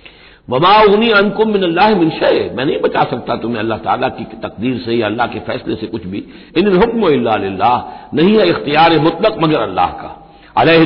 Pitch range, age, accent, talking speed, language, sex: 125-180 Hz, 60-79, native, 170 wpm, Hindi, male